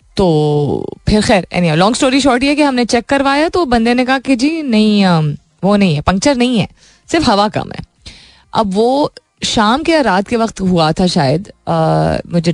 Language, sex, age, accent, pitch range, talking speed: Hindi, female, 20-39, native, 155-210 Hz, 195 wpm